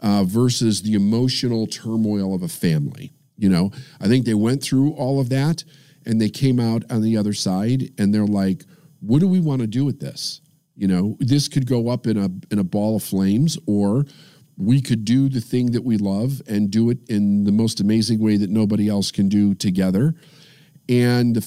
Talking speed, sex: 210 wpm, male